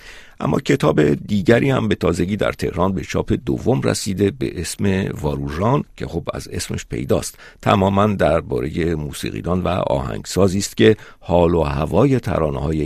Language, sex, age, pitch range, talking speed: Persian, male, 50-69, 80-105 Hz, 145 wpm